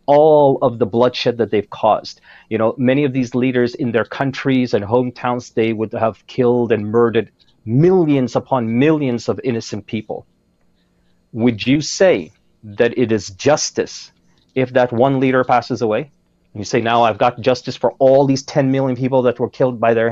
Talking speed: 180 wpm